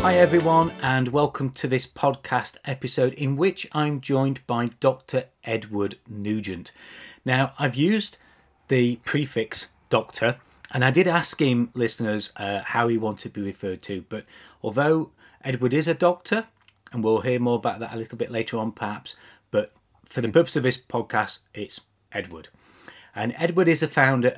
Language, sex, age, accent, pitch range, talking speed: English, male, 30-49, British, 115-145 Hz, 165 wpm